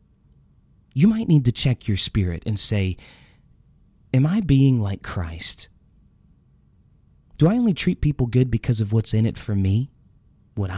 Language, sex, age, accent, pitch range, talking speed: English, male, 30-49, American, 95-120 Hz, 155 wpm